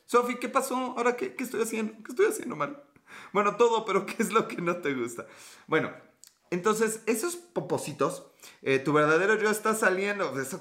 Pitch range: 135-215 Hz